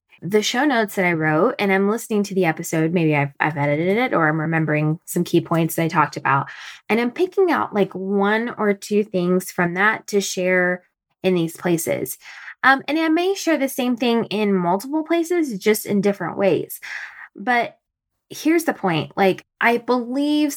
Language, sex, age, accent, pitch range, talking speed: English, female, 20-39, American, 170-225 Hz, 190 wpm